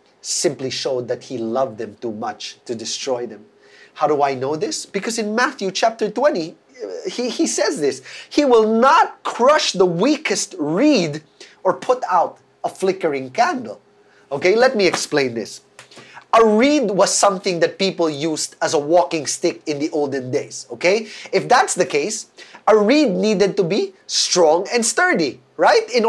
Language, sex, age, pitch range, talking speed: English, male, 30-49, 150-225 Hz, 170 wpm